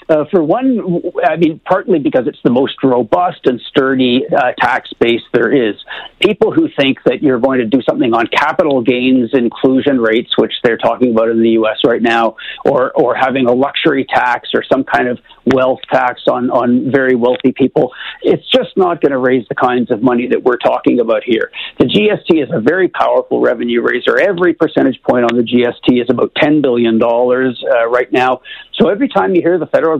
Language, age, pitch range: English, 50-69, 125-150 Hz